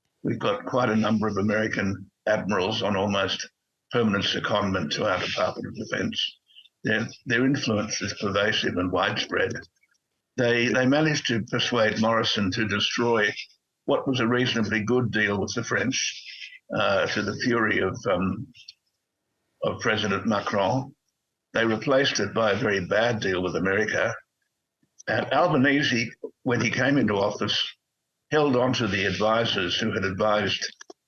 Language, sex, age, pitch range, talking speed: English, male, 60-79, 105-125 Hz, 145 wpm